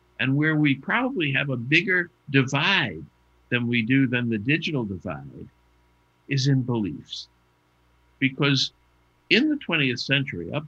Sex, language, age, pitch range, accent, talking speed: male, English, 50-69, 95-140 Hz, American, 135 wpm